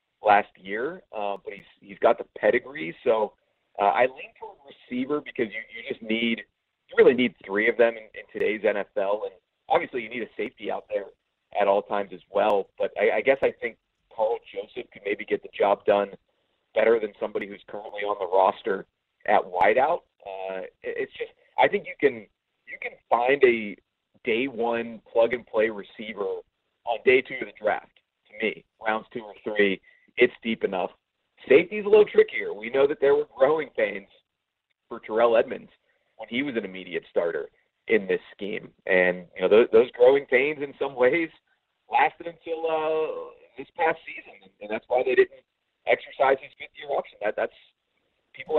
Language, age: English, 30-49